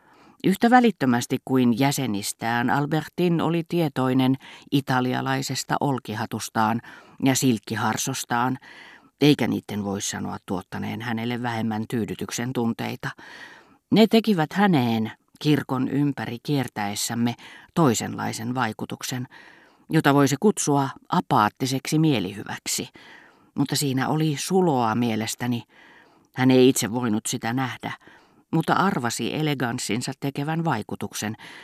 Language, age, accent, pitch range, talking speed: Finnish, 40-59, native, 115-140 Hz, 95 wpm